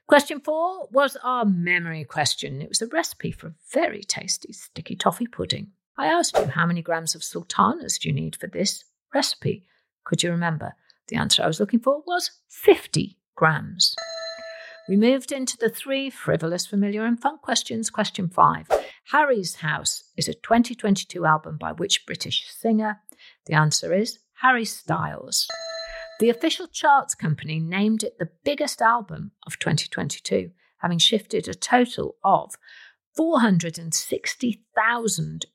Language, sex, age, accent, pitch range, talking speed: English, female, 50-69, British, 170-250 Hz, 145 wpm